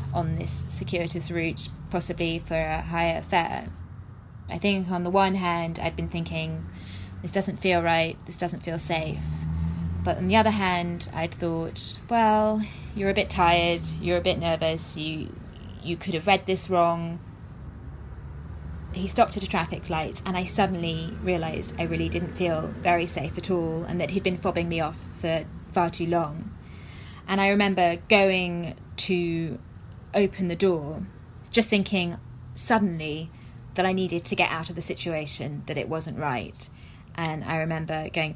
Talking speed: 165 wpm